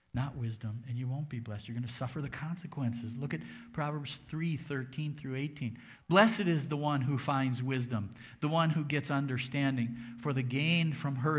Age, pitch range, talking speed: 50-69, 120-155 Hz, 195 wpm